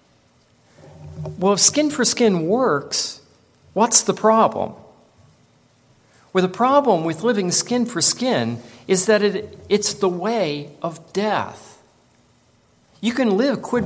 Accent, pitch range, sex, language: American, 145-220 Hz, male, English